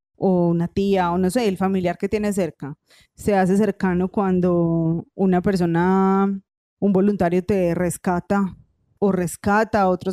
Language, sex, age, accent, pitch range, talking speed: Spanish, female, 20-39, Colombian, 175-205 Hz, 150 wpm